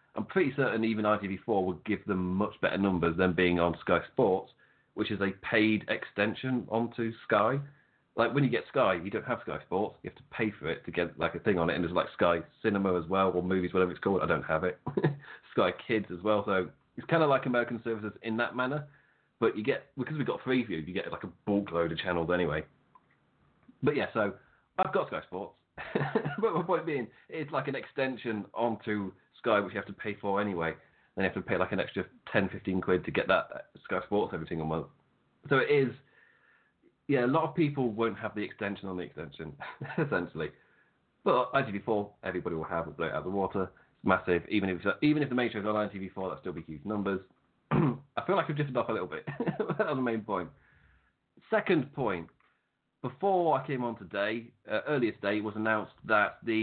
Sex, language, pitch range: male, English, 95-125 Hz